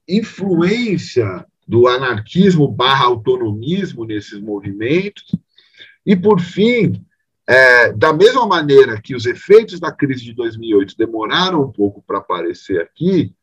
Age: 40-59